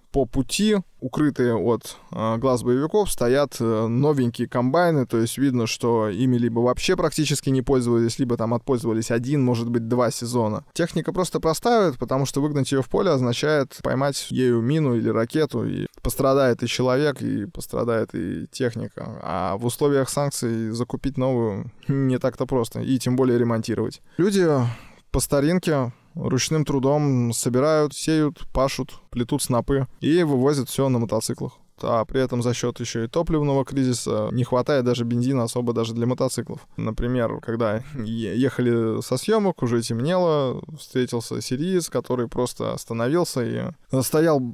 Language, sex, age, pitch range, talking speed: Russian, male, 20-39, 120-145 Hz, 150 wpm